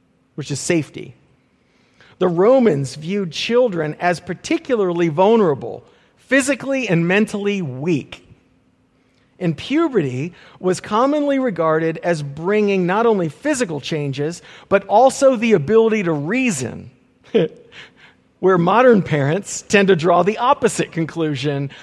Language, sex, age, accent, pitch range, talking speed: English, male, 50-69, American, 155-210 Hz, 110 wpm